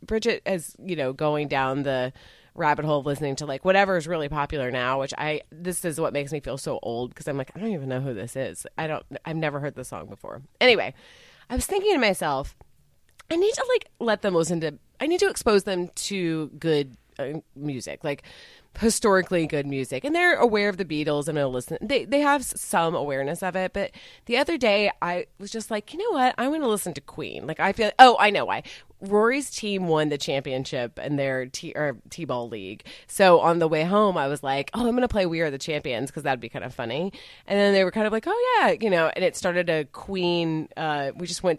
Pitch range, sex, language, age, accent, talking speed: 145-210 Hz, female, English, 30-49, American, 240 wpm